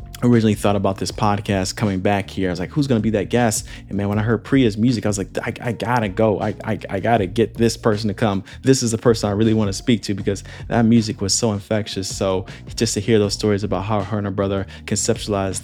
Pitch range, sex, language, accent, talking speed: 100-120 Hz, male, English, American, 275 wpm